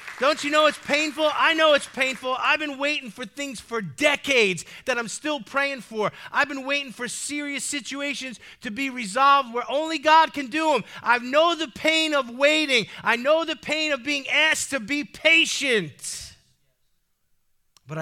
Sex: male